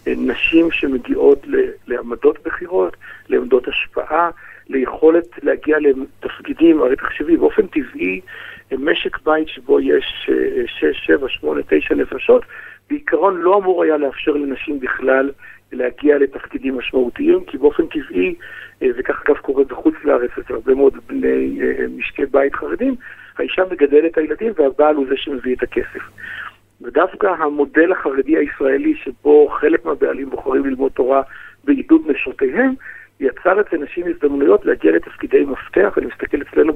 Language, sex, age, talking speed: Hebrew, male, 50-69, 125 wpm